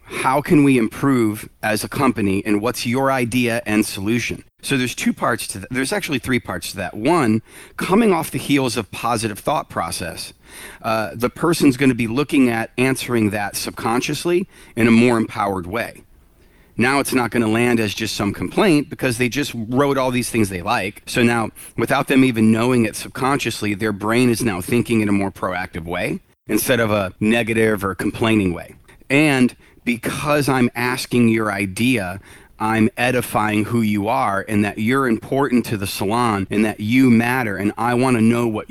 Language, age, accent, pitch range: English, 40-59, American, 105-130 Hz